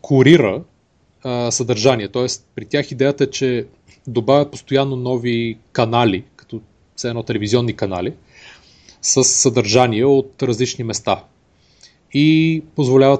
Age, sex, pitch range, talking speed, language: 30-49, male, 115-145 Hz, 115 wpm, Bulgarian